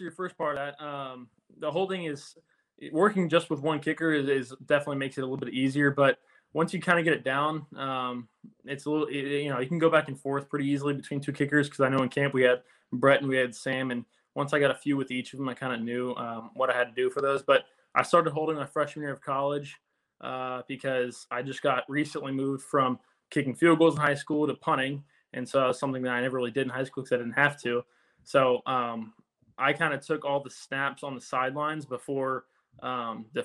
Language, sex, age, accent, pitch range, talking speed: English, male, 20-39, American, 125-145 Hz, 255 wpm